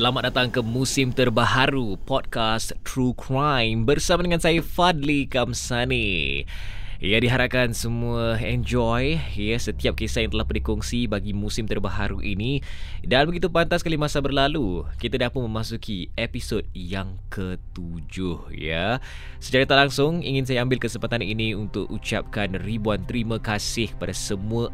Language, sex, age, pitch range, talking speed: Malay, male, 20-39, 100-130 Hz, 140 wpm